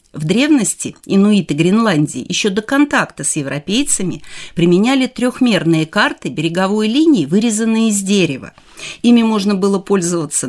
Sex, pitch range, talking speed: female, 160-220 Hz, 120 wpm